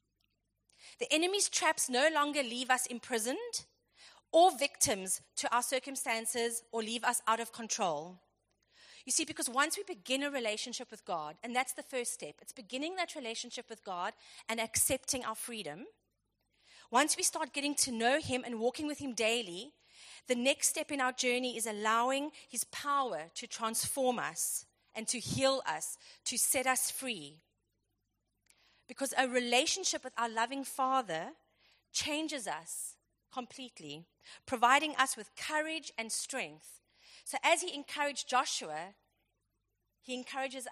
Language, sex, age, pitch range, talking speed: English, female, 30-49, 220-280 Hz, 145 wpm